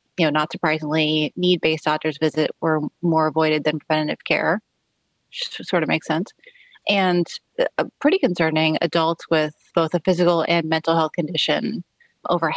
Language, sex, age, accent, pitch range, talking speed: English, female, 30-49, American, 160-180 Hz, 155 wpm